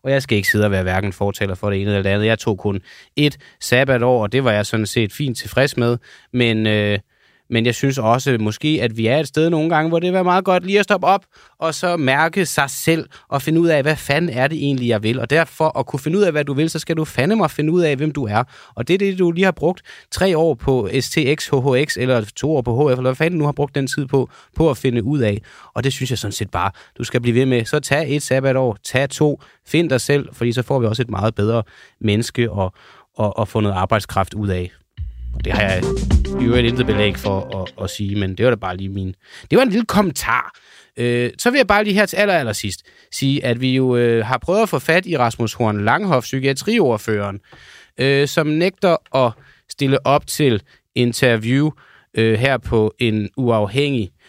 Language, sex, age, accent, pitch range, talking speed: Danish, male, 20-39, native, 110-155 Hz, 240 wpm